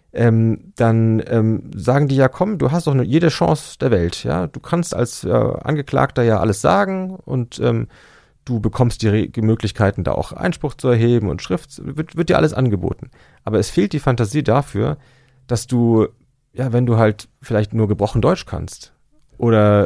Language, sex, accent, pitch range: German, male, German, 95-130 Hz